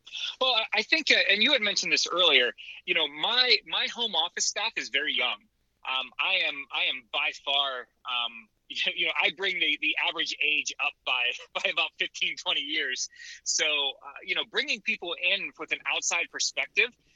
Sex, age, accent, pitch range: male, 30-49, American, 135-220 Hz